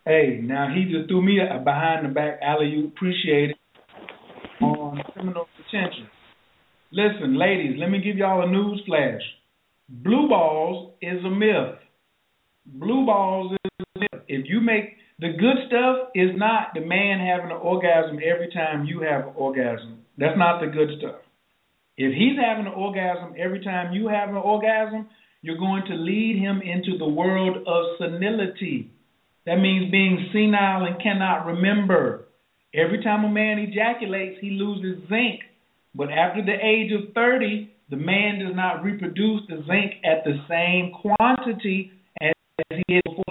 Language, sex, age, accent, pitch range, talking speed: English, male, 50-69, American, 165-210 Hz, 165 wpm